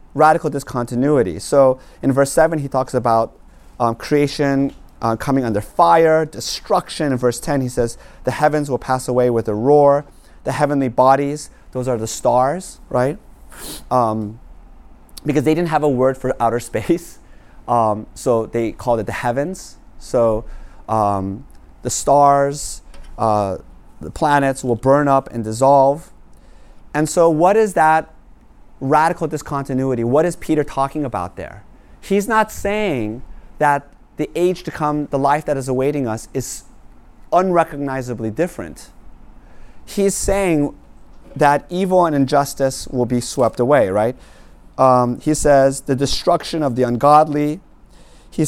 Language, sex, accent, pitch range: English, male, American, 125-155 Hz